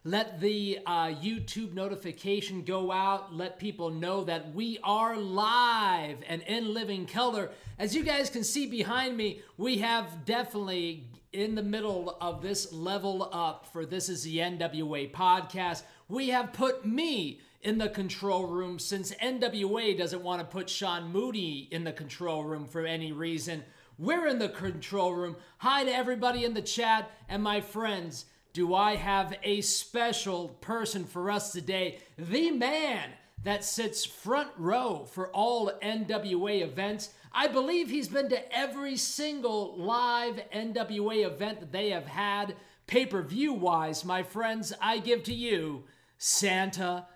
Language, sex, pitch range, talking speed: English, male, 180-225 Hz, 155 wpm